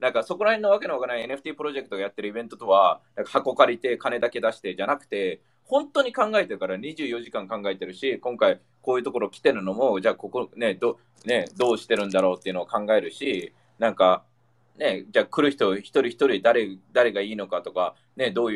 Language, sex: Japanese, male